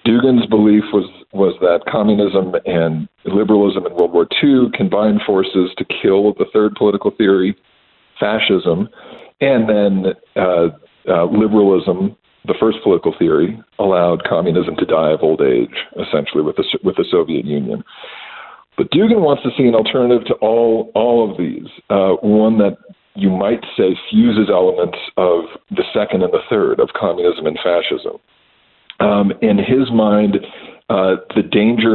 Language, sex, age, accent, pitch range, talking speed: English, male, 50-69, American, 100-125 Hz, 150 wpm